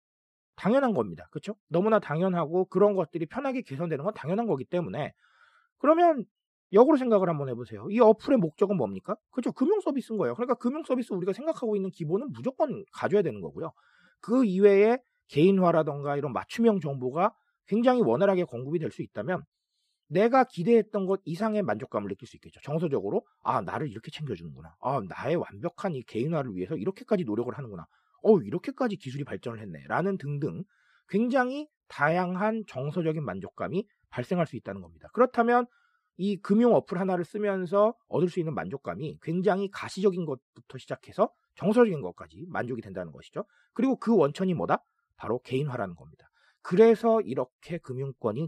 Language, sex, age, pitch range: Korean, male, 40-59, 145-225 Hz